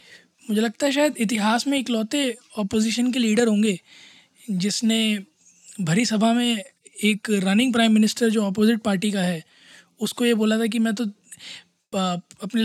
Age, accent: 20-39, native